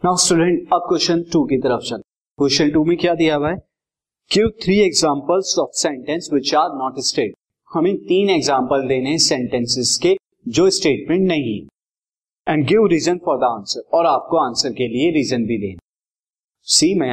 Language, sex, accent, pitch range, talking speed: Hindi, male, native, 130-200 Hz, 160 wpm